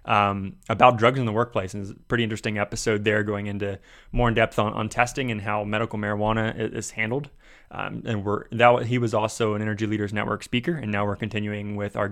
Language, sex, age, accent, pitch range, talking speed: English, male, 20-39, American, 105-120 Hz, 225 wpm